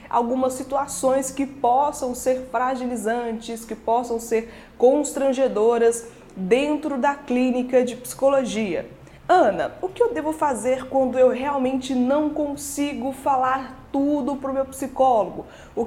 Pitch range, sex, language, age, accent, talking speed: 220-270 Hz, female, Portuguese, 20-39, Brazilian, 125 wpm